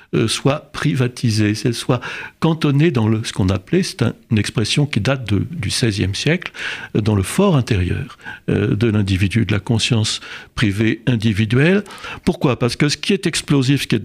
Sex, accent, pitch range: male, French, 105-145 Hz